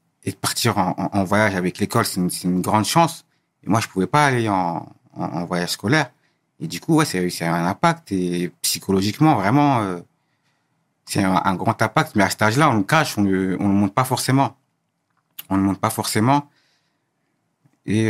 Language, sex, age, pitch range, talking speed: French, male, 50-69, 95-125 Hz, 210 wpm